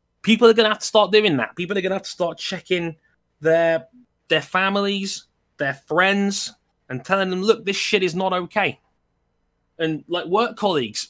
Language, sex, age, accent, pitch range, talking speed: English, male, 20-39, British, 150-215 Hz, 180 wpm